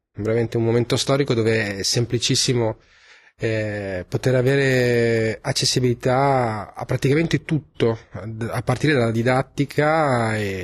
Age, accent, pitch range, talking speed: 30-49, native, 110-130 Hz, 105 wpm